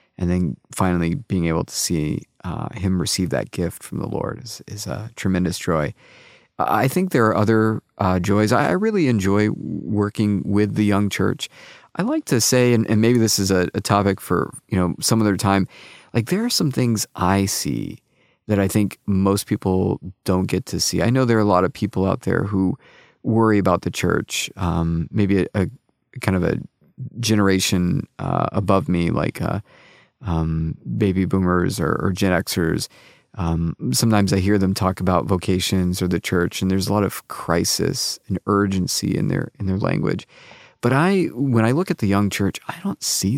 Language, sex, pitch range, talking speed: English, male, 95-110 Hz, 195 wpm